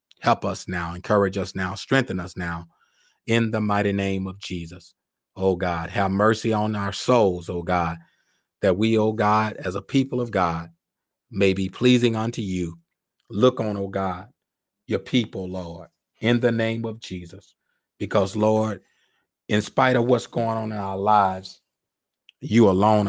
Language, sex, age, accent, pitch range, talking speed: English, male, 30-49, American, 95-115 Hz, 165 wpm